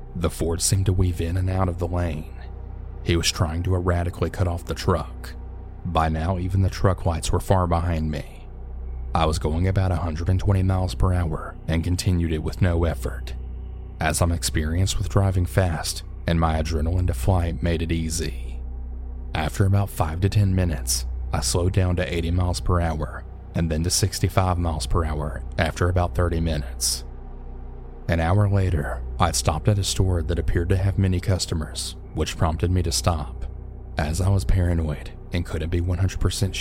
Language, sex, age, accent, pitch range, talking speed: English, male, 30-49, American, 80-95 Hz, 180 wpm